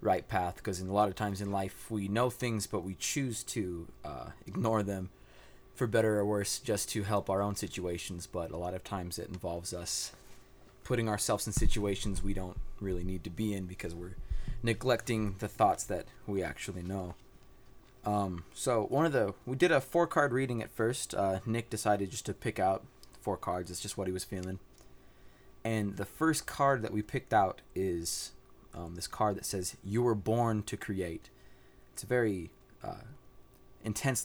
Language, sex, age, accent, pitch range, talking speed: English, male, 20-39, American, 95-120 Hz, 195 wpm